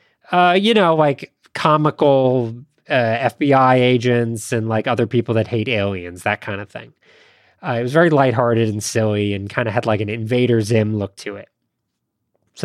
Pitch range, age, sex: 115-155 Hz, 30-49, male